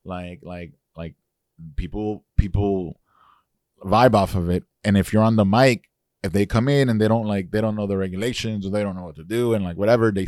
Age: 20-39